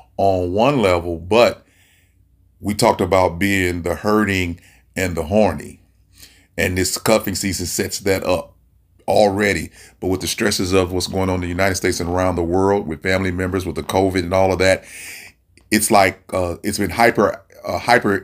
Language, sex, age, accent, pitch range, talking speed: English, male, 30-49, American, 90-100 Hz, 180 wpm